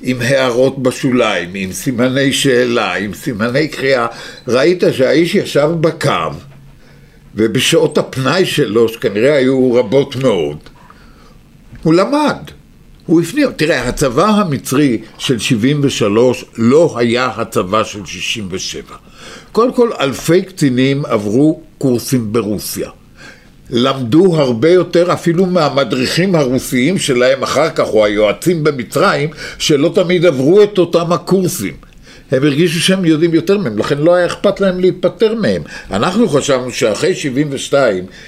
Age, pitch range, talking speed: 60-79, 130-180 Hz, 120 wpm